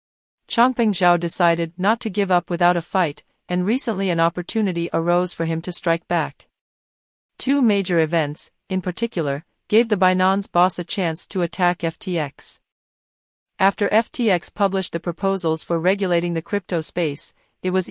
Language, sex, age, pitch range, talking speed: Romanian, female, 40-59, 170-200 Hz, 155 wpm